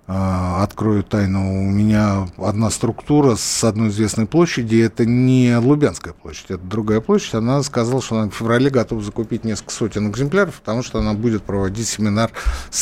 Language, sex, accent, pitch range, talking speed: Russian, male, native, 110-165 Hz, 170 wpm